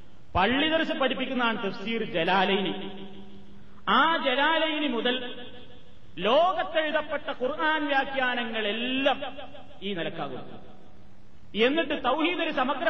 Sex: male